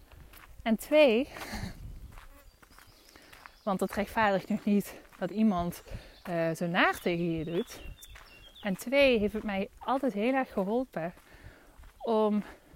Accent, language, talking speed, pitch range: Dutch, Dutch, 120 wpm, 185-235 Hz